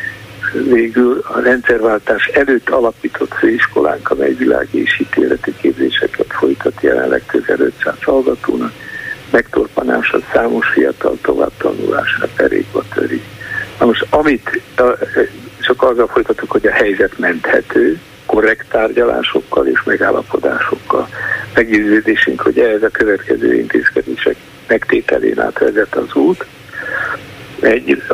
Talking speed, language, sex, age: 100 wpm, Hungarian, male, 60-79